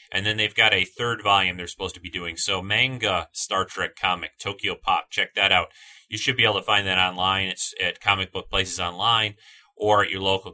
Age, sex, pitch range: 30-49, male, 90-110 Hz